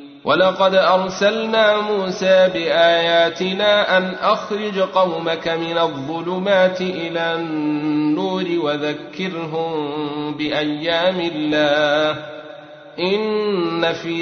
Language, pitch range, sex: Arabic, 150-195 Hz, male